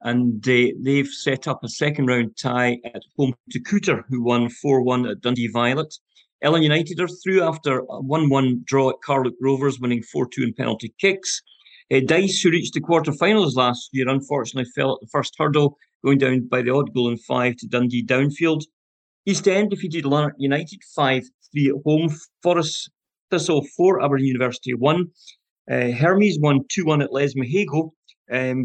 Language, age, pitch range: English, 40-59, 130-160 Hz